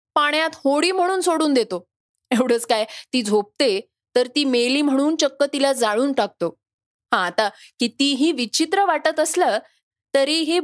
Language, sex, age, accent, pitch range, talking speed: Marathi, female, 20-39, native, 220-280 Hz, 135 wpm